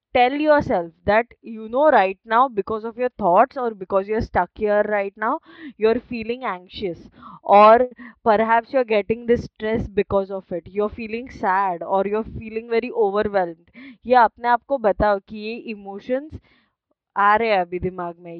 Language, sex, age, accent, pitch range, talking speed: Hindi, female, 20-39, native, 200-245 Hz, 185 wpm